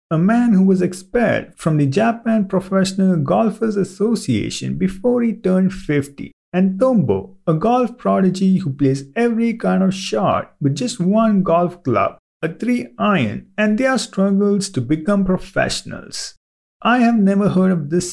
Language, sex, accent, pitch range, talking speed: English, male, Indian, 175-225 Hz, 150 wpm